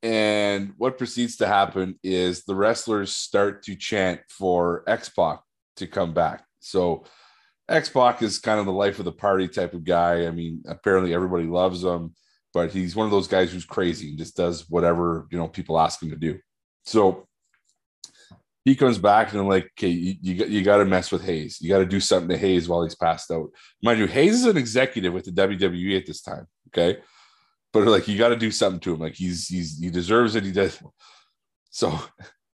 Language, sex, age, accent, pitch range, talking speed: English, male, 30-49, American, 90-115 Hz, 205 wpm